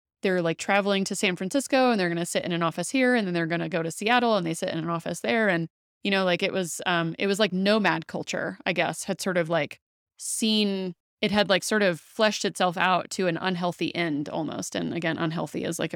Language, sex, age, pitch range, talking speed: English, female, 20-39, 170-195 Hz, 250 wpm